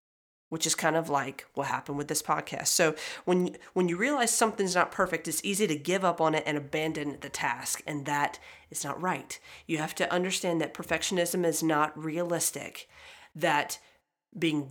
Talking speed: 185 wpm